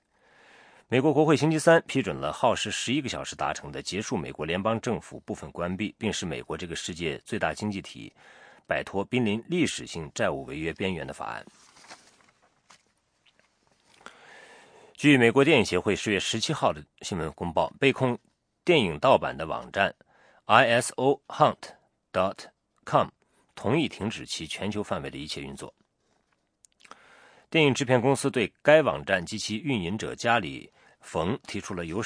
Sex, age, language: male, 40-59, English